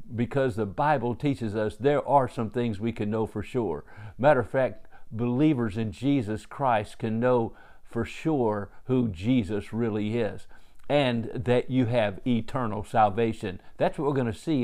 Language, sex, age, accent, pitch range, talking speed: English, male, 50-69, American, 110-130 Hz, 170 wpm